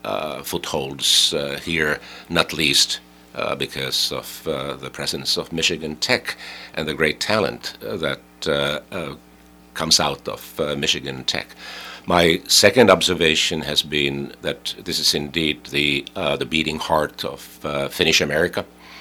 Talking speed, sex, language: 150 wpm, male, English